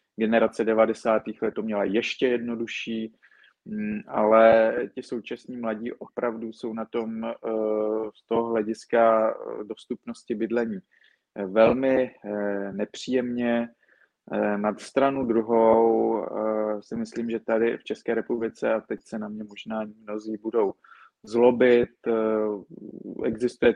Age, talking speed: 20-39, 105 wpm